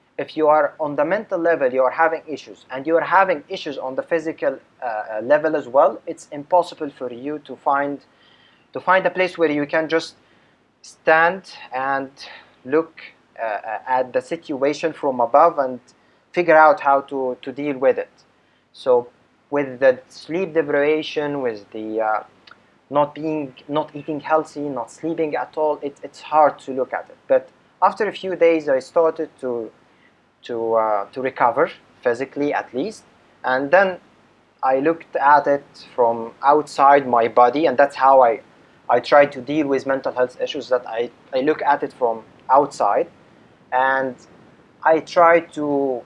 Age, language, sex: 30-49, English, male